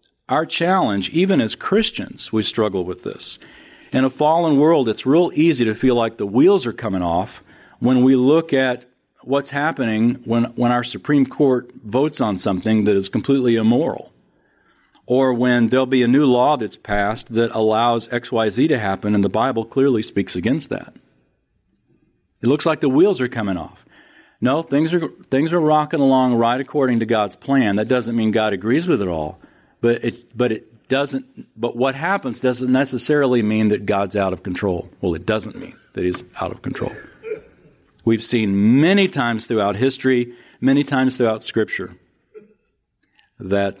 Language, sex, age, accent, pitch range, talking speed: English, male, 40-59, American, 110-135 Hz, 175 wpm